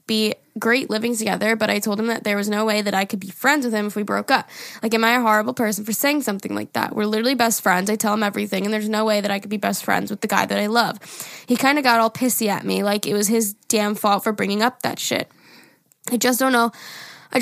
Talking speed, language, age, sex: 285 wpm, English, 10-29, female